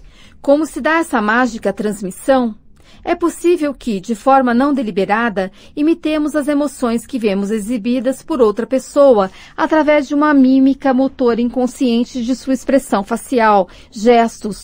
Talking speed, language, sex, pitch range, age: 135 wpm, Portuguese, female, 225-275 Hz, 40-59